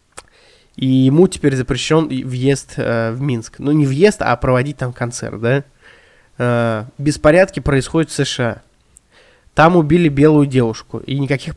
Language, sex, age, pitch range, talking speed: Russian, male, 20-39, 120-150 Hz, 140 wpm